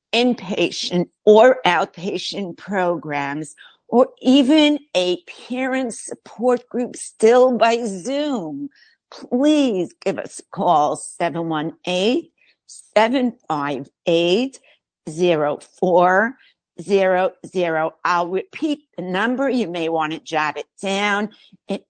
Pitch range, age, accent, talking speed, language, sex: 175-245 Hz, 50-69, American, 85 wpm, English, female